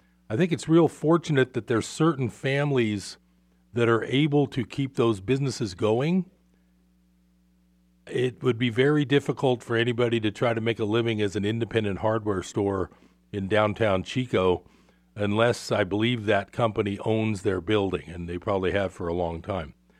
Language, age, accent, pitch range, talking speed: English, 40-59, American, 100-125 Hz, 165 wpm